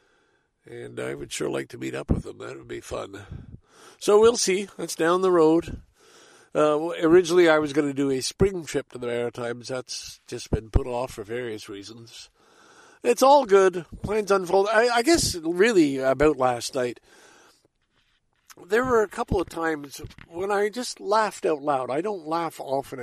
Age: 60-79